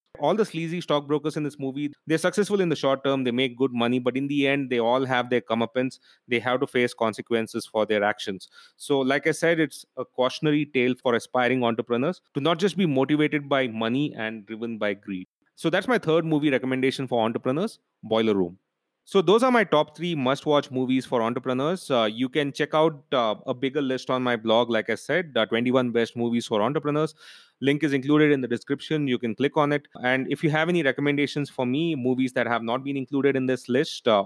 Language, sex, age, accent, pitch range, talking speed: English, male, 30-49, Indian, 115-145 Hz, 220 wpm